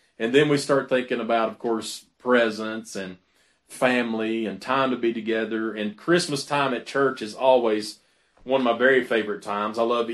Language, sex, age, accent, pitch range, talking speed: English, male, 40-59, American, 115-155 Hz, 185 wpm